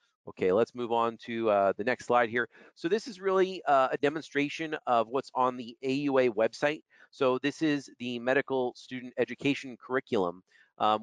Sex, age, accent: male, 40-59, American